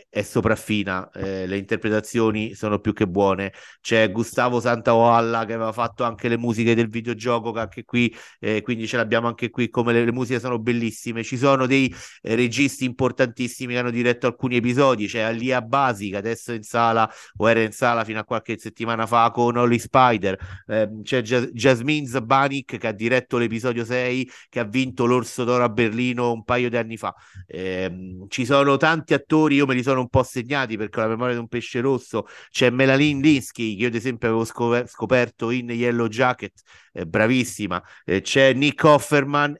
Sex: male